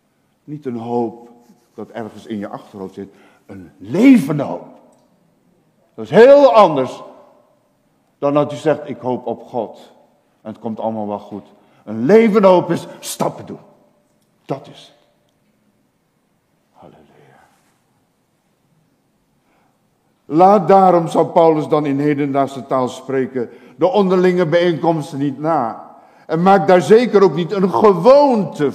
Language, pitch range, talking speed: Dutch, 135-215 Hz, 130 wpm